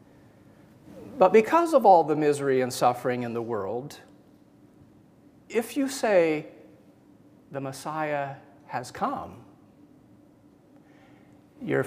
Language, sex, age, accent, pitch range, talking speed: English, male, 40-59, American, 135-175 Hz, 95 wpm